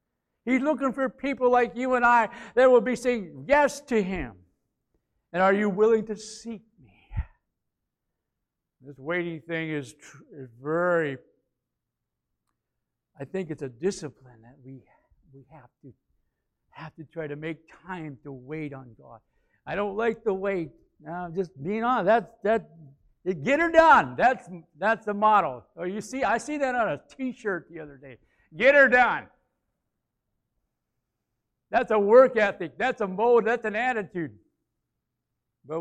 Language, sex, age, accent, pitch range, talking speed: English, male, 60-79, American, 140-215 Hz, 155 wpm